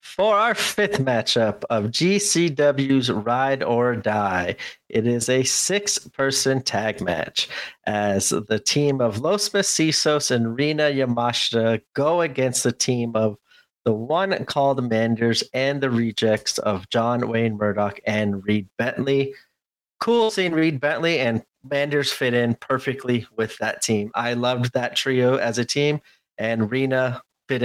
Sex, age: male, 30-49